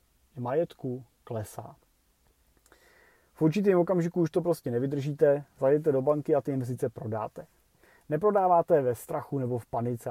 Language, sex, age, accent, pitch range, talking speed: Czech, male, 30-49, native, 125-165 Hz, 130 wpm